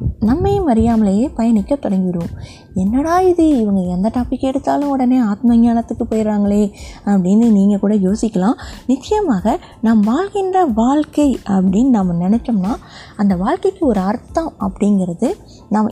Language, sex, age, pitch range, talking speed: Tamil, female, 20-39, 200-285 Hz, 115 wpm